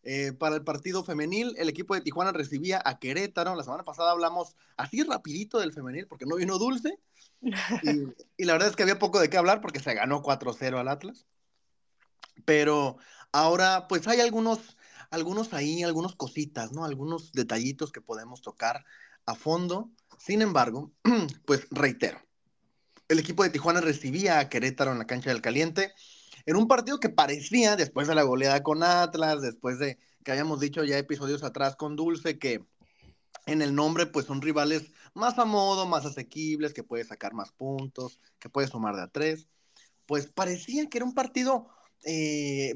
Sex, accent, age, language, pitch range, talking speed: male, Mexican, 30-49, Spanish, 145-195 Hz, 175 wpm